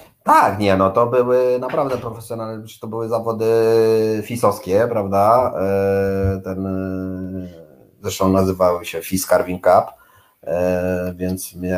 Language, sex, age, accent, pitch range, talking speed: Polish, male, 30-49, native, 95-140 Hz, 100 wpm